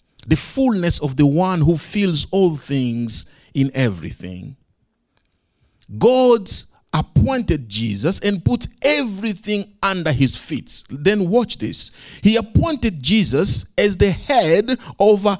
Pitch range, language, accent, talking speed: 135-225 Hz, English, Nigerian, 115 wpm